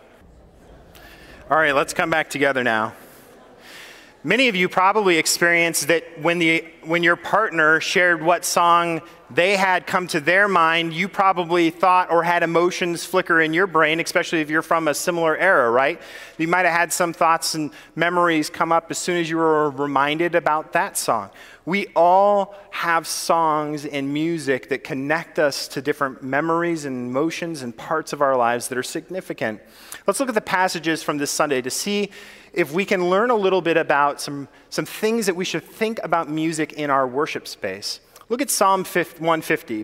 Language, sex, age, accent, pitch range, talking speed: English, male, 30-49, American, 155-185 Hz, 180 wpm